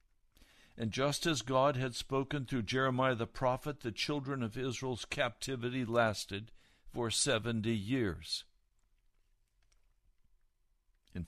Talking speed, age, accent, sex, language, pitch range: 105 wpm, 60-79, American, male, English, 90-125 Hz